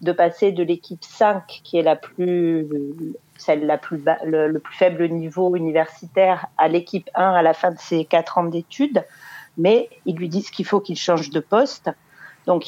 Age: 40-59